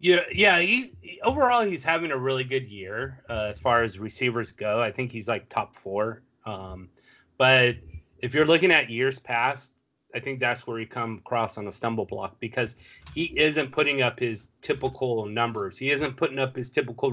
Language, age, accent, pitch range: English, 30-49, American, 110-130 Hz